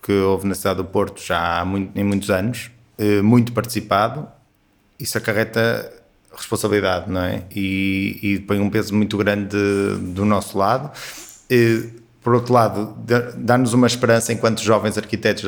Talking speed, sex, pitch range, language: 155 wpm, male, 100-115 Hz, Portuguese